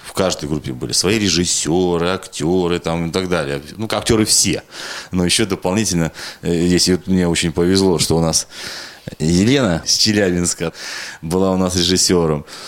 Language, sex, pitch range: Russian, male, 85-105 Hz